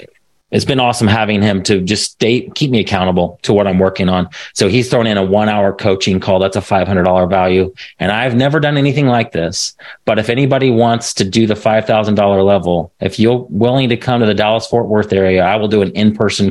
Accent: American